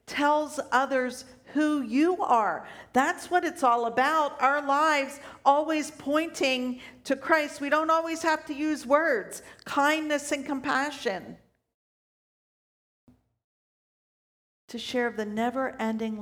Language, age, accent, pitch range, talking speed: English, 50-69, American, 205-275 Hz, 110 wpm